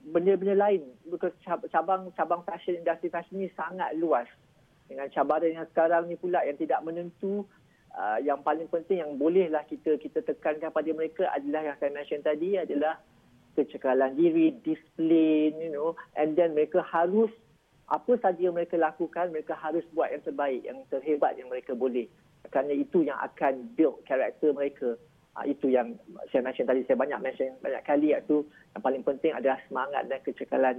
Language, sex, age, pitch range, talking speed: Malay, male, 40-59, 140-170 Hz, 160 wpm